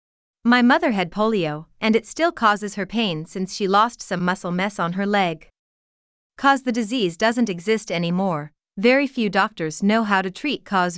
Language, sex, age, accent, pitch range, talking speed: English, female, 30-49, American, 180-235 Hz, 180 wpm